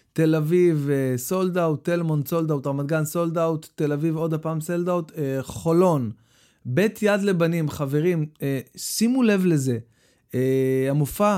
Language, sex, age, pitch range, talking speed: Hebrew, male, 30-49, 125-160 Hz, 130 wpm